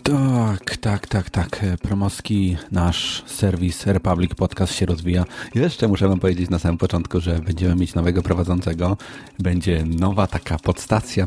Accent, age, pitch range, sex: native, 40-59, 85-95 Hz, male